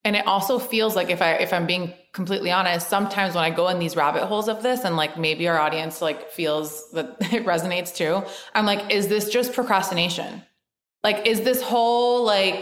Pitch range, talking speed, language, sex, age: 175-210 Hz, 210 wpm, English, female, 20-39